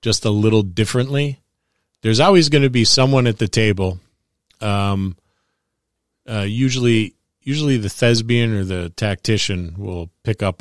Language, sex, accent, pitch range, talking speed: English, male, American, 100-120 Hz, 140 wpm